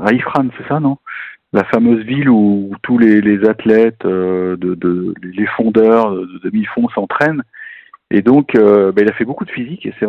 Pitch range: 100-135 Hz